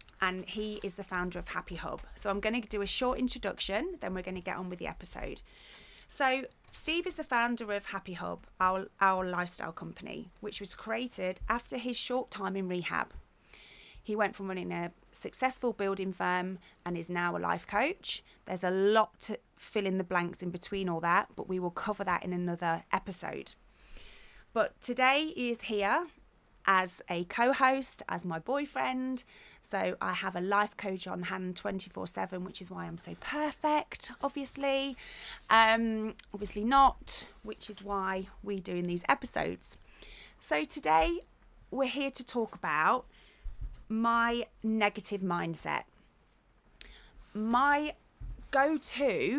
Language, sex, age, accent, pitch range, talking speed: English, female, 30-49, British, 185-245 Hz, 160 wpm